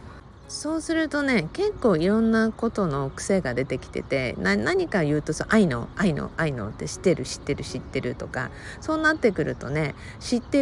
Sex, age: female, 50-69